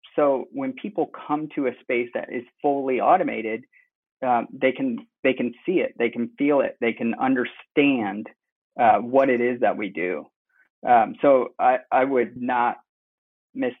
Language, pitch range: English, 120-145 Hz